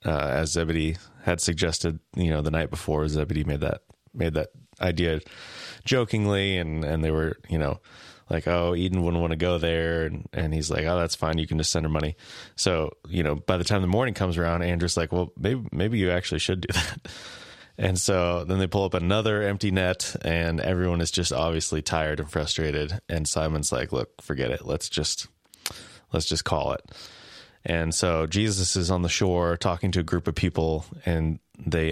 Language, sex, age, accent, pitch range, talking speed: English, male, 20-39, American, 80-95 Hz, 205 wpm